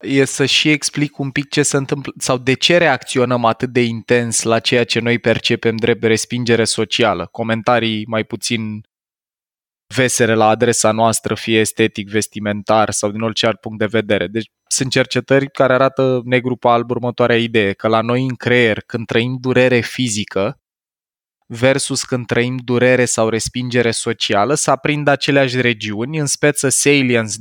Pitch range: 115-135 Hz